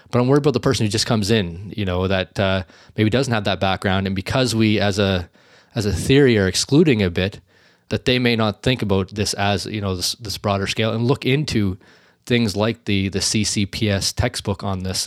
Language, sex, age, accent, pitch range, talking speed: English, male, 20-39, American, 100-120 Hz, 225 wpm